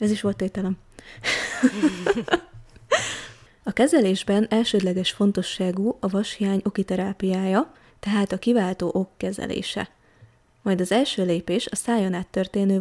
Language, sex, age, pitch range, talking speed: Hungarian, female, 20-39, 185-225 Hz, 110 wpm